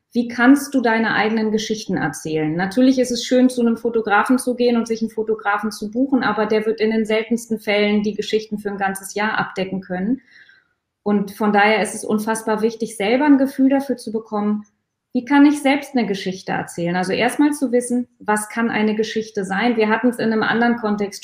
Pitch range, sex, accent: 215-250 Hz, female, German